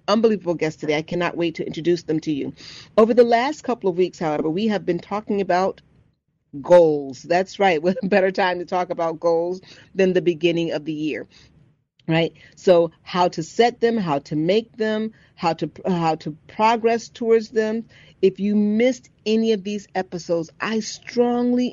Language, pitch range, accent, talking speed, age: English, 170-230 Hz, American, 180 wpm, 40-59